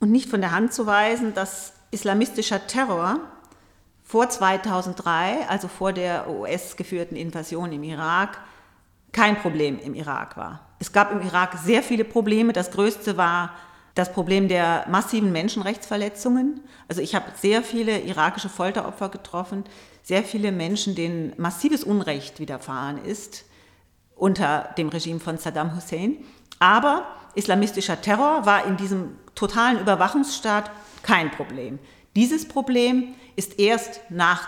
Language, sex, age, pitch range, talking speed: German, female, 40-59, 165-220 Hz, 130 wpm